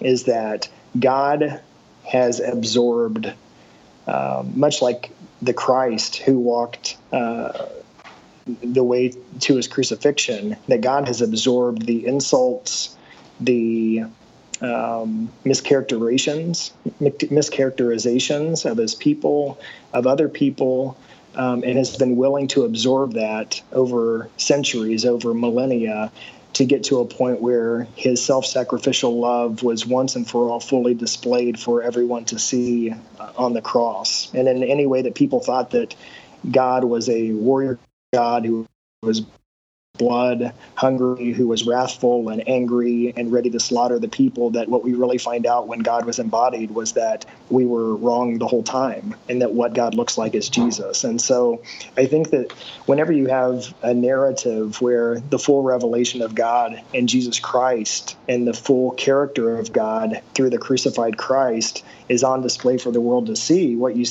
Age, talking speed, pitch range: 40-59, 150 wpm, 120-130 Hz